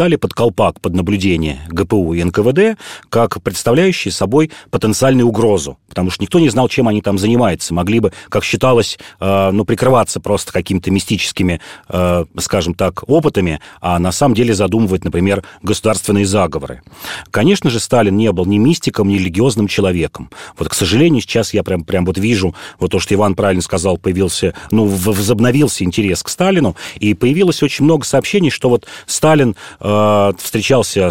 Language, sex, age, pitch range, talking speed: Russian, male, 40-59, 90-115 Hz, 160 wpm